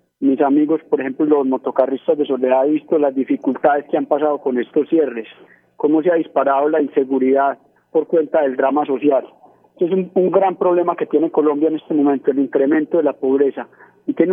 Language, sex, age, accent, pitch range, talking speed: Spanish, male, 40-59, Colombian, 135-160 Hz, 200 wpm